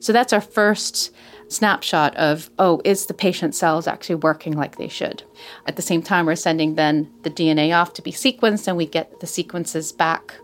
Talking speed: 200 wpm